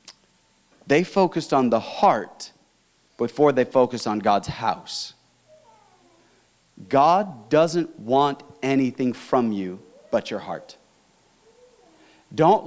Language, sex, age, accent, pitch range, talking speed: English, male, 40-59, American, 145-215 Hz, 100 wpm